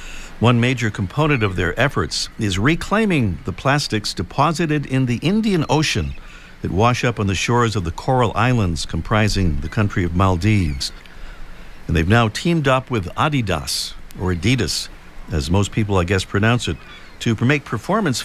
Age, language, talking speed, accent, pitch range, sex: 50-69, English, 160 wpm, American, 105-145 Hz, male